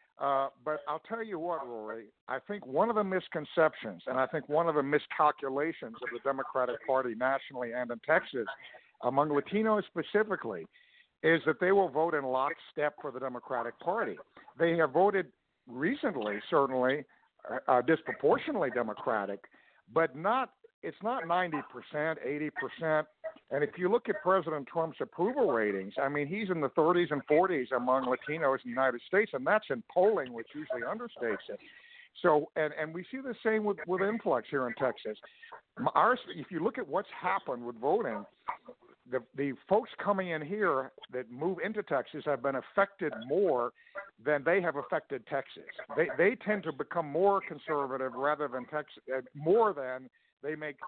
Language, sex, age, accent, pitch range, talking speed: English, male, 60-79, American, 135-195 Hz, 170 wpm